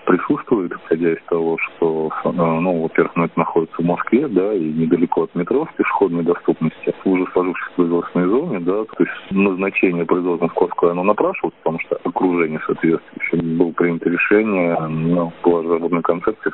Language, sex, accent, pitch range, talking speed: Russian, male, native, 85-90 Hz, 175 wpm